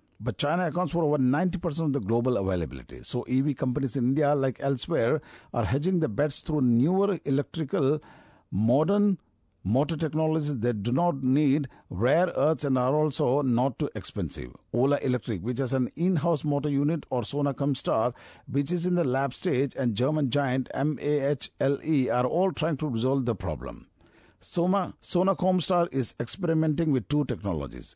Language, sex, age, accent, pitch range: Japanese, male, 50-69, Indian, 120-150 Hz